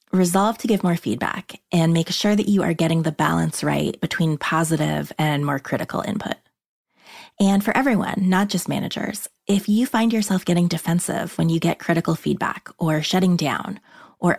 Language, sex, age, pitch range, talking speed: English, female, 20-39, 155-195 Hz, 175 wpm